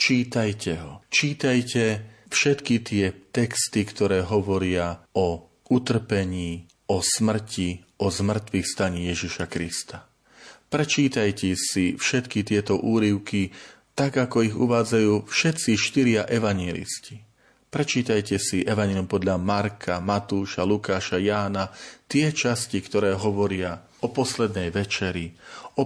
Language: Slovak